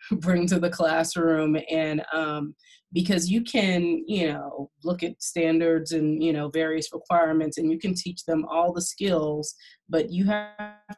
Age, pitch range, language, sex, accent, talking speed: 20-39, 155-175 Hz, English, female, American, 165 wpm